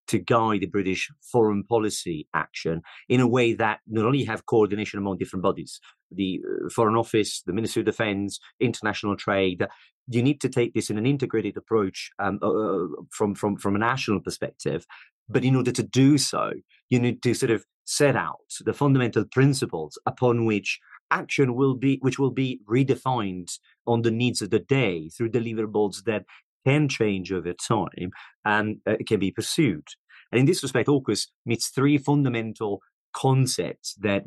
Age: 40-59